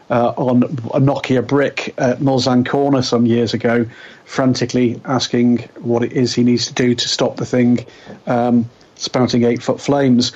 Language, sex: English, male